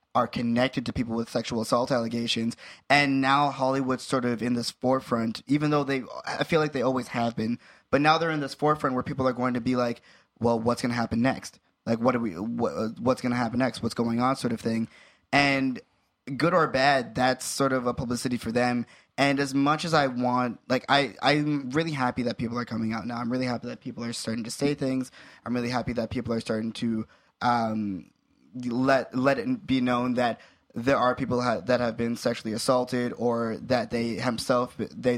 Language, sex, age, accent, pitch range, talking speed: English, male, 20-39, American, 120-135 Hz, 215 wpm